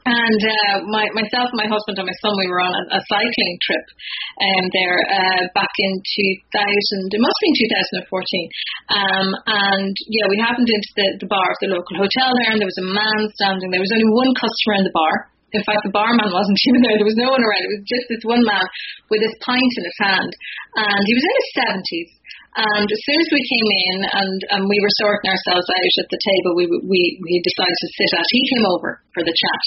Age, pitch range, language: 30-49, 195-240 Hz, English